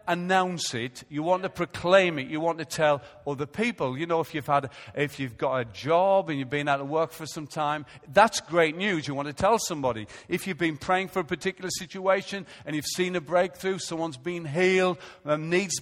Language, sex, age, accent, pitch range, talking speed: English, male, 40-59, British, 150-205 Hz, 215 wpm